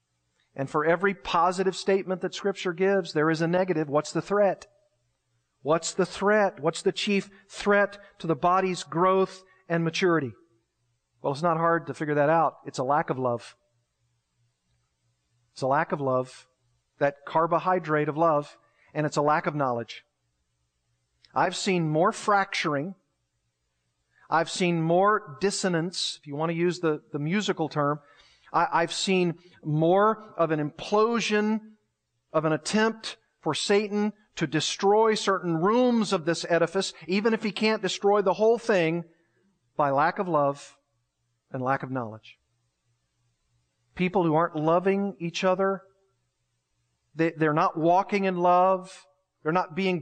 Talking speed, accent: 145 wpm, American